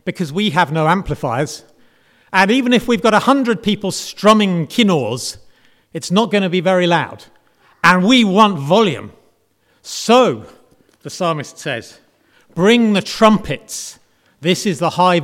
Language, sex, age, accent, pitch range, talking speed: English, male, 40-59, British, 150-200 Hz, 145 wpm